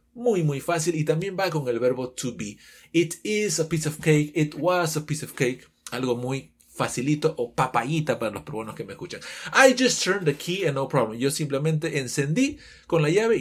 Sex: male